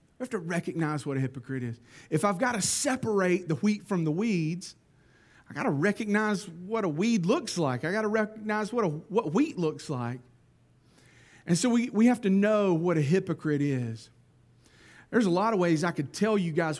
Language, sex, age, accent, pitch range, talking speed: English, male, 40-59, American, 155-205 Hz, 205 wpm